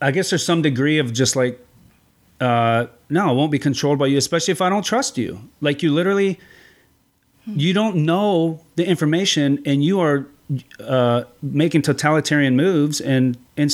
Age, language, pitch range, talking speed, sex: 30-49, English, 120-165 Hz, 170 wpm, male